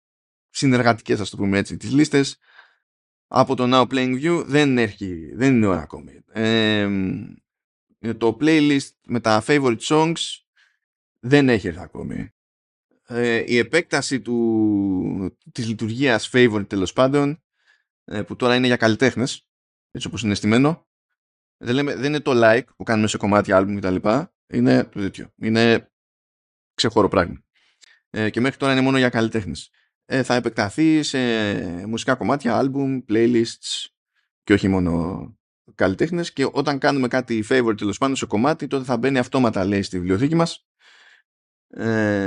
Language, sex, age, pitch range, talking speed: Greek, male, 20-39, 105-135 Hz, 140 wpm